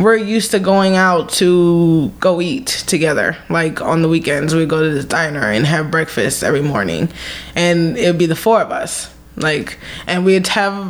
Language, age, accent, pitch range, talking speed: English, 20-39, American, 170-195 Hz, 200 wpm